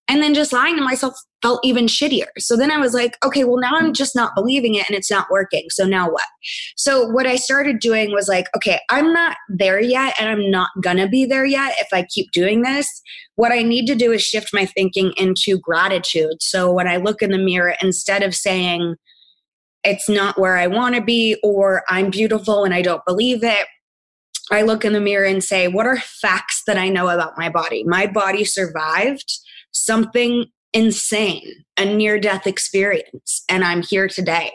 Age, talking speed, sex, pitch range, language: 20-39, 205 wpm, female, 185-225 Hz, English